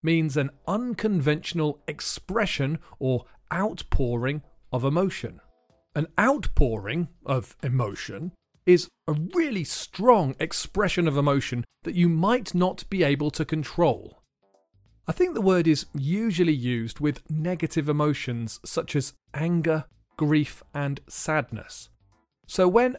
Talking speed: 115 wpm